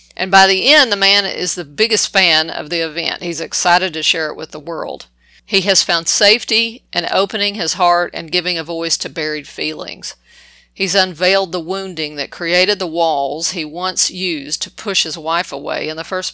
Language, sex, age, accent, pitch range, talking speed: English, female, 50-69, American, 155-195 Hz, 200 wpm